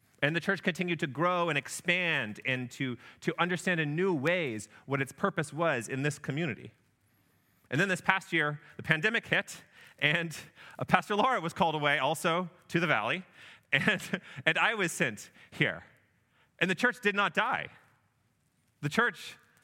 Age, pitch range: 30-49, 125-175 Hz